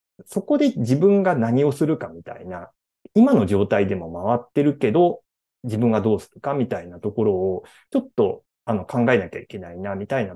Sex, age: male, 30-49